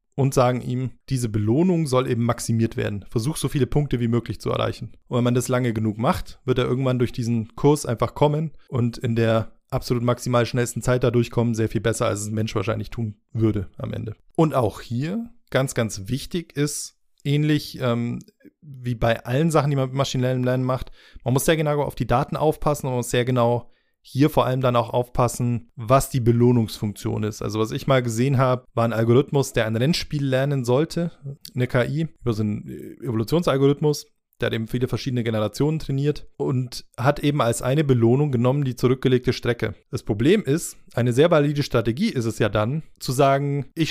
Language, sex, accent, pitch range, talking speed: German, male, German, 115-140 Hz, 200 wpm